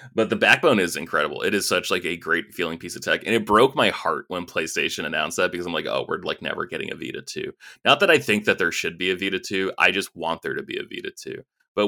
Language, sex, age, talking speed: English, male, 20-39, 285 wpm